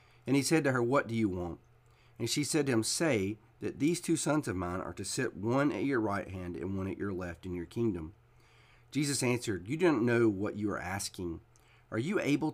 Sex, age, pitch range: male, 40-59, 95-120 Hz